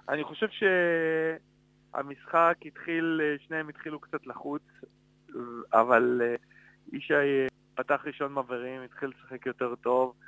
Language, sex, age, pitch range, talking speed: Hebrew, male, 30-49, 120-140 Hz, 100 wpm